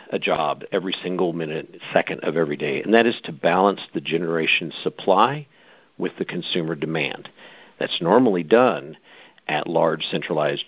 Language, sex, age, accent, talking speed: English, male, 50-69, American, 150 wpm